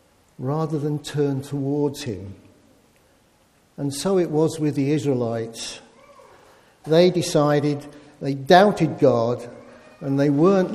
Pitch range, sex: 140-195 Hz, male